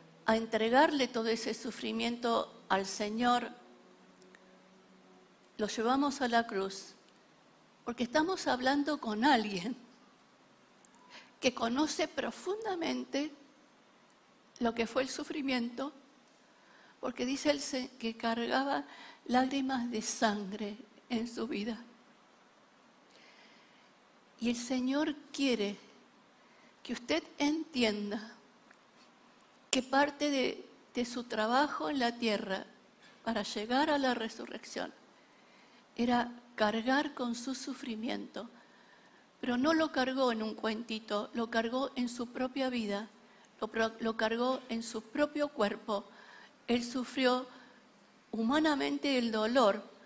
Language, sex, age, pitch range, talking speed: Spanish, female, 50-69, 225-275 Hz, 105 wpm